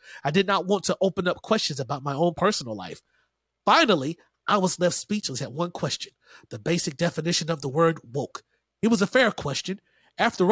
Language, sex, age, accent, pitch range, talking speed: English, male, 30-49, American, 150-195 Hz, 195 wpm